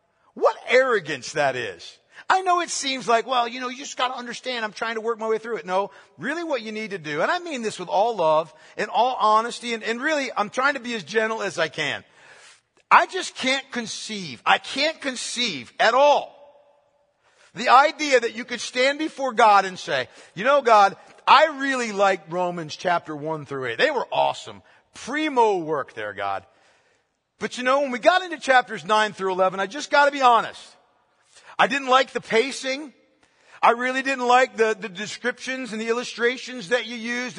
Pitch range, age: 200-270 Hz, 50-69